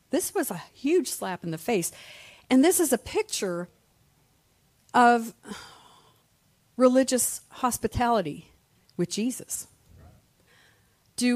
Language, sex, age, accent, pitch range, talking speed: English, female, 50-69, American, 175-240 Hz, 100 wpm